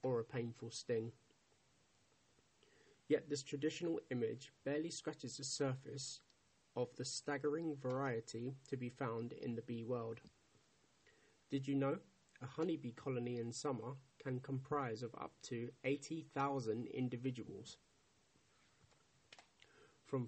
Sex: male